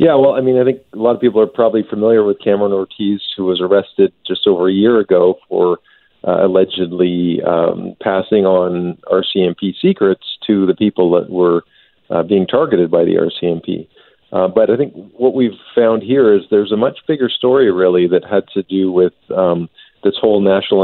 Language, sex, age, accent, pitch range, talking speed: English, male, 50-69, American, 90-110 Hz, 195 wpm